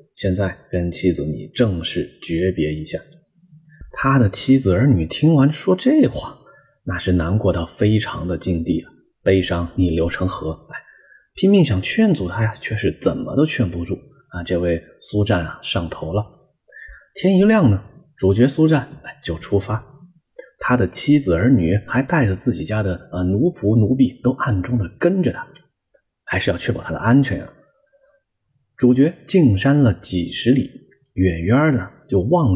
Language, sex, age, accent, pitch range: Chinese, male, 20-39, native, 90-140 Hz